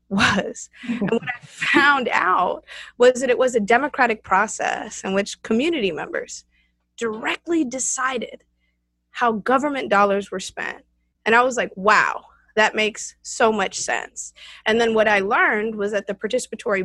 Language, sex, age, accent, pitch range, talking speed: English, female, 20-39, American, 200-245 Hz, 155 wpm